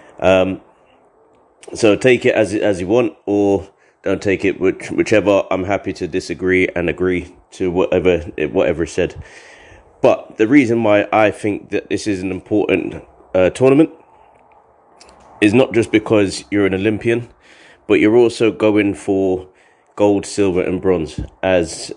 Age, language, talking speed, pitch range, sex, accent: 30-49, English, 150 wpm, 95-110 Hz, male, British